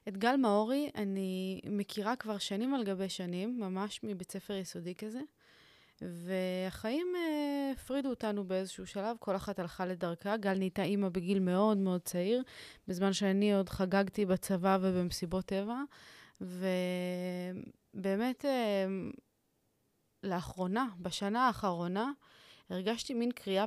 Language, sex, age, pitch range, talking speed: Hebrew, female, 20-39, 185-235 Hz, 115 wpm